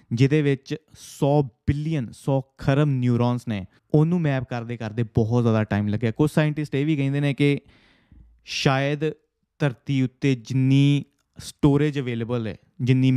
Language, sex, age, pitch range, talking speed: Punjabi, male, 20-39, 115-140 Hz, 140 wpm